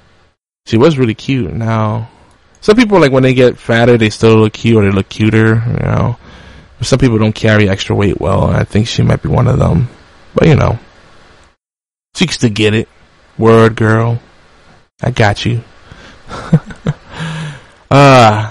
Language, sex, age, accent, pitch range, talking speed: English, male, 20-39, American, 110-125 Hz, 170 wpm